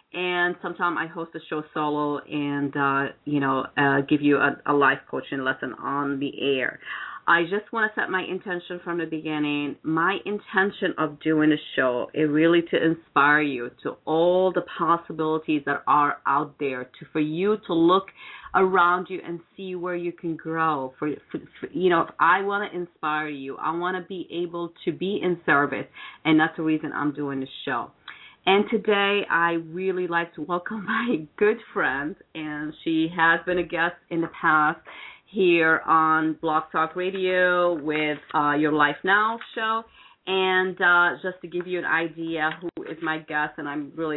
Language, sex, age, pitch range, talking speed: English, female, 40-59, 150-175 Hz, 185 wpm